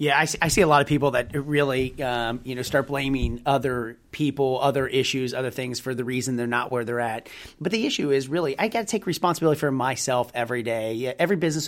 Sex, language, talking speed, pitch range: male, English, 225 wpm, 125-155 Hz